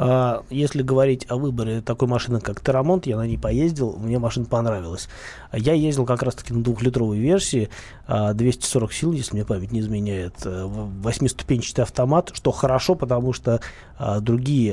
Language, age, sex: Russian, 20-39, male